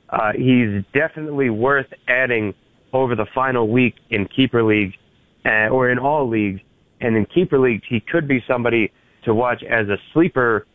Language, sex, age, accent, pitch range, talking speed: English, male, 30-49, American, 105-125 Hz, 165 wpm